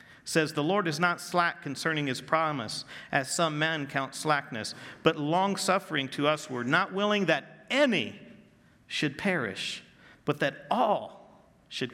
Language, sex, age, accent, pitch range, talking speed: English, male, 50-69, American, 160-215 Hz, 150 wpm